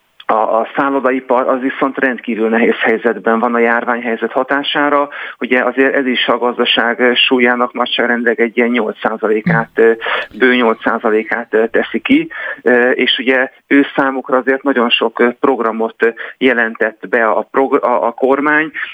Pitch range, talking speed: 120-135 Hz, 130 wpm